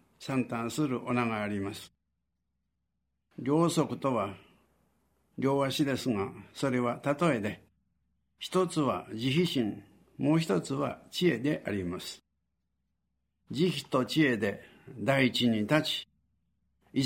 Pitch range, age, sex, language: 100-145 Hz, 60-79, male, Japanese